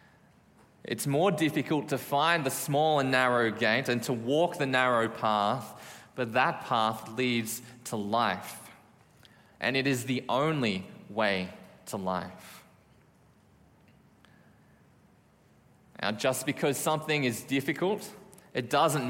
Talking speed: 120 wpm